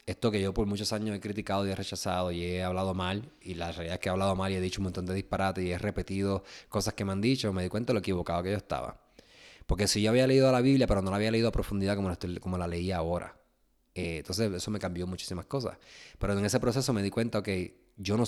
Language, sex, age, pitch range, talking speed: Spanish, male, 20-39, 90-110 Hz, 280 wpm